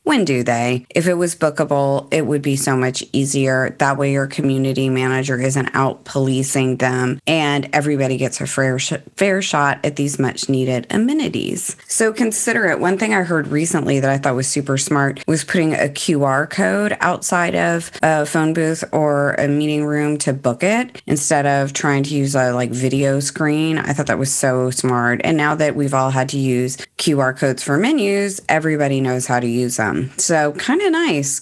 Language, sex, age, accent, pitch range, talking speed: English, female, 20-39, American, 135-165 Hz, 195 wpm